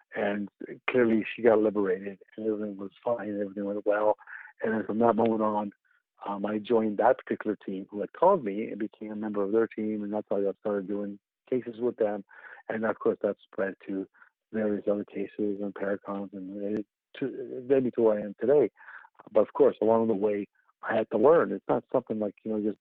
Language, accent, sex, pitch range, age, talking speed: English, American, male, 100-115 Hz, 50-69, 210 wpm